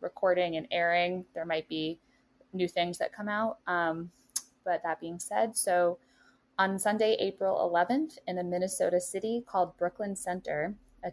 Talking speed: 155 wpm